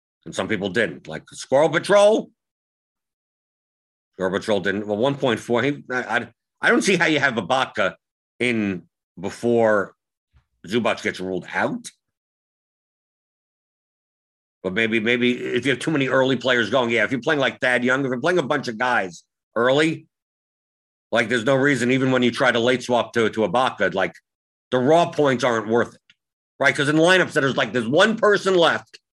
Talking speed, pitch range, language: 180 wpm, 115-150 Hz, English